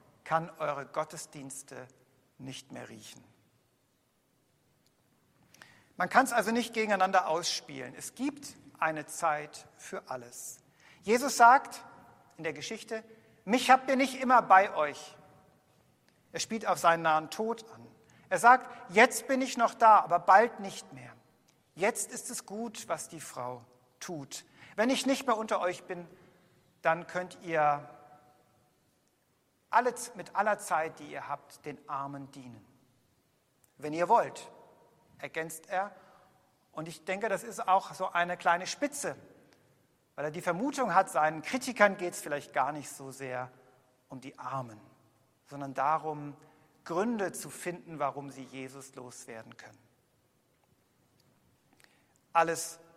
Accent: German